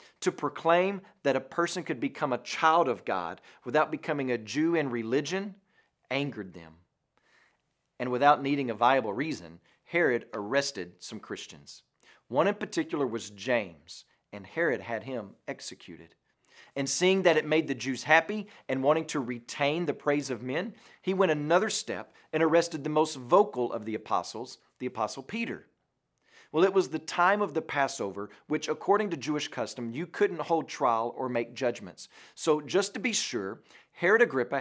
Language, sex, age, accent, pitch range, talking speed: English, male, 40-59, American, 125-165 Hz, 170 wpm